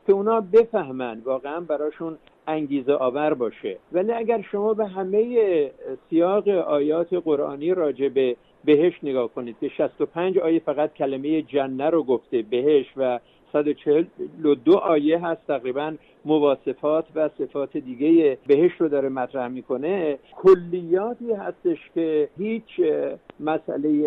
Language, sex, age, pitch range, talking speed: Persian, male, 50-69, 145-210 Hz, 115 wpm